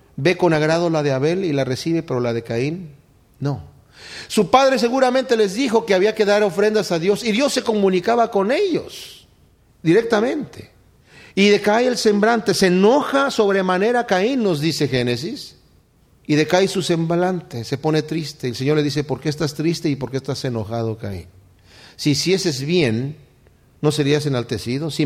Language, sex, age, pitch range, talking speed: Spanish, male, 40-59, 135-200 Hz, 175 wpm